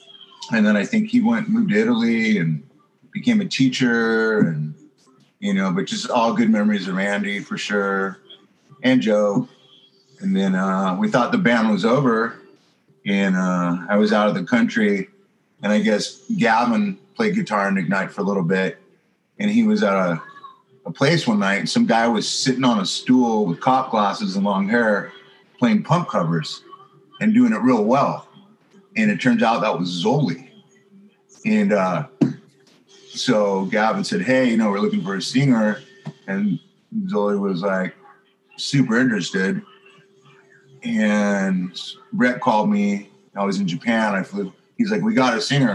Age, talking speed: 30-49, 170 wpm